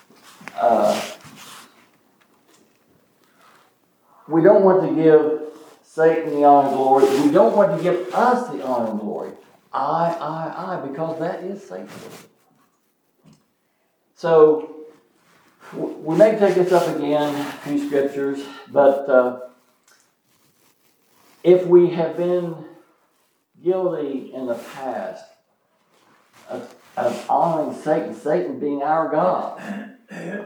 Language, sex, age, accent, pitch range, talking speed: English, male, 60-79, American, 140-185 Hz, 110 wpm